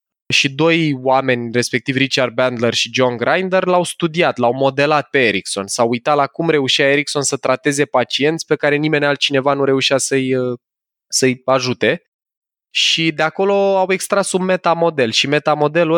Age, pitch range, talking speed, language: 20-39, 125-155 Hz, 160 wpm, Romanian